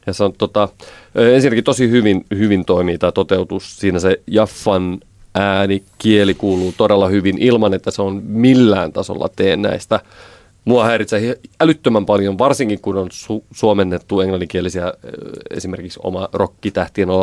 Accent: native